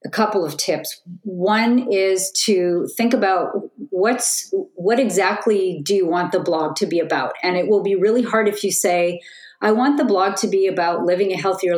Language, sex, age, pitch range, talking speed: English, female, 40-59, 170-210 Hz, 200 wpm